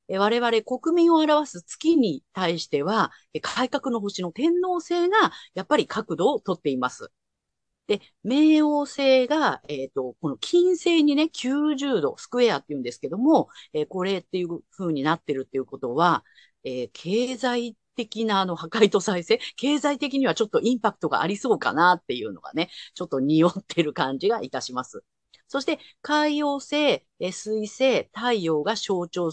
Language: Japanese